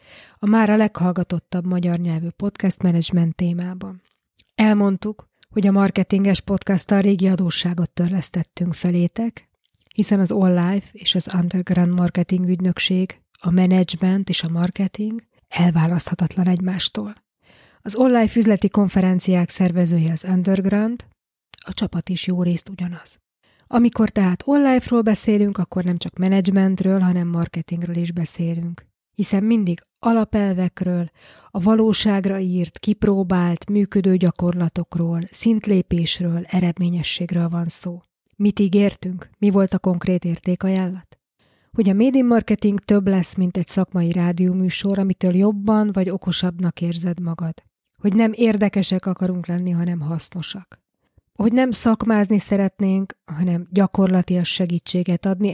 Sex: female